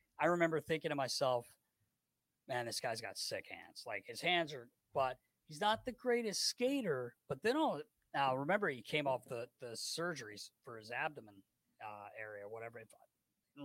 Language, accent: English, American